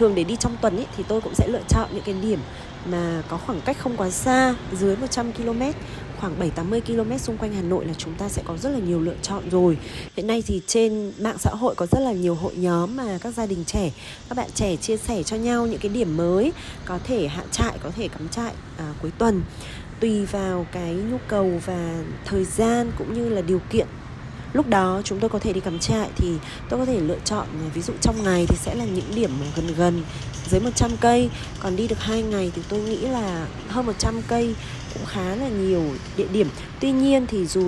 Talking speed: 235 wpm